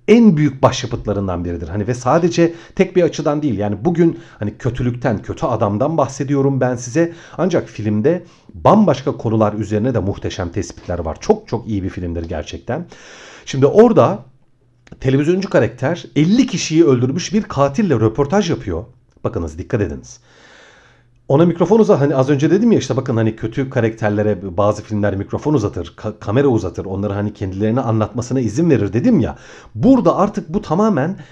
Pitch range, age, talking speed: 105-165 Hz, 40-59, 155 wpm